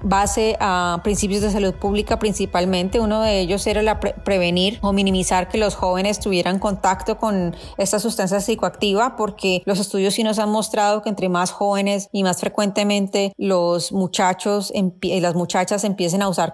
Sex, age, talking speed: female, 30-49, 175 wpm